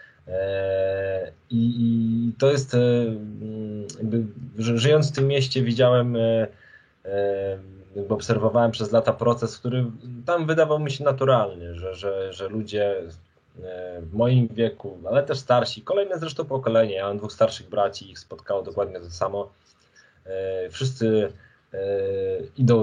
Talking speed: 120 wpm